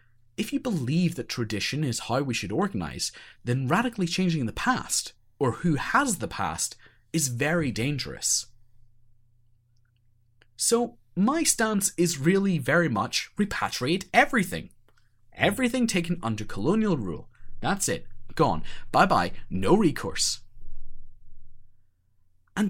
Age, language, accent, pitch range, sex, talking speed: 30-49, English, British, 115-185 Hz, male, 120 wpm